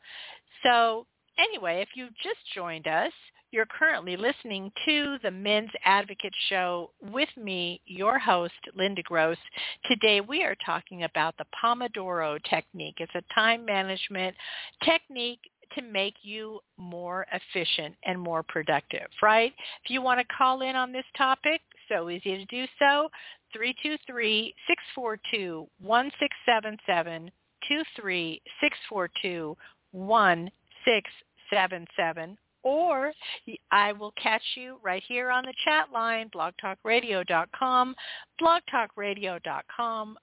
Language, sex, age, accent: English, female, 50-69, American